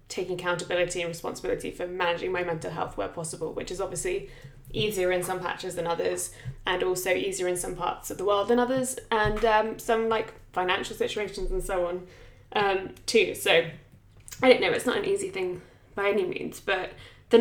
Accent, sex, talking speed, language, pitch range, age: British, female, 195 wpm, English, 175-220 Hz, 10-29